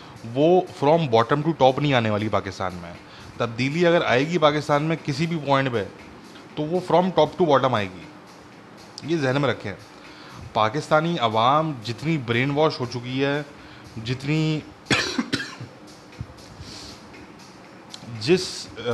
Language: English